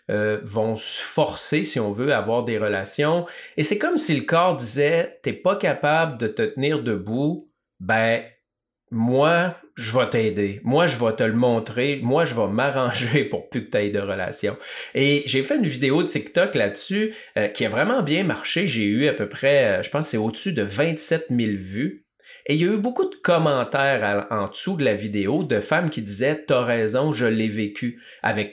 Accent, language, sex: Canadian, French, male